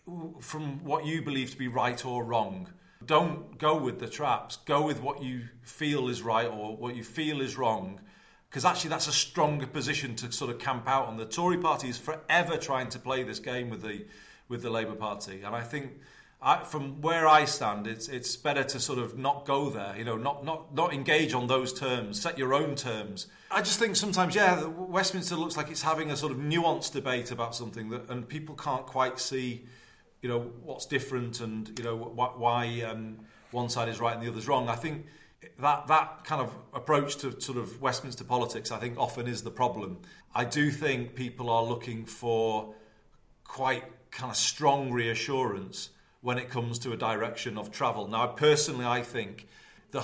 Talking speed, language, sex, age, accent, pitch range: 205 wpm, English, male, 40-59, British, 115-150 Hz